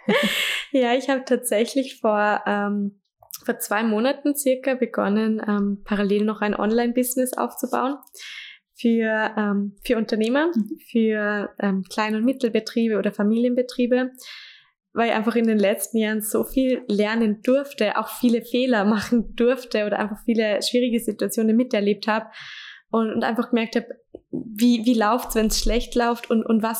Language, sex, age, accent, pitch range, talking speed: German, female, 10-29, German, 210-240 Hz, 145 wpm